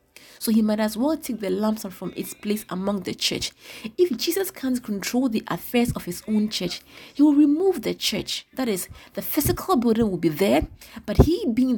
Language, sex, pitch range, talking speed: English, female, 205-265 Hz, 205 wpm